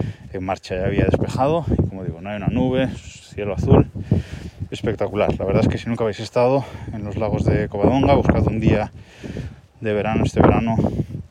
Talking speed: 185 wpm